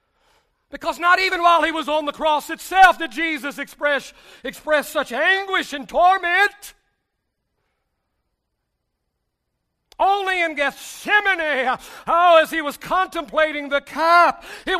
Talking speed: 120 wpm